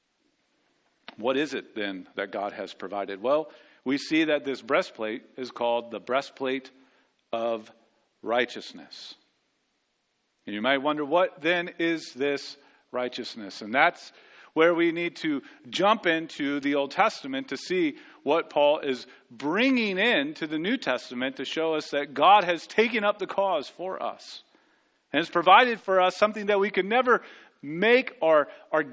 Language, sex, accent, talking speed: English, male, American, 160 wpm